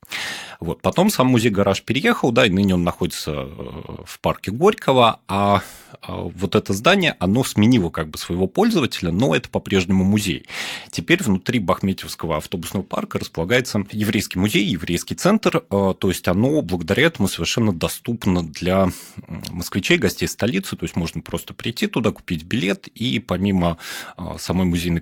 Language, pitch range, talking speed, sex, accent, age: Russian, 90-110 Hz, 145 wpm, male, native, 30-49